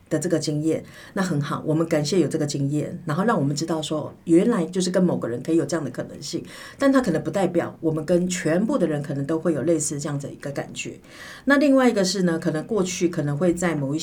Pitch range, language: 150-185 Hz, Chinese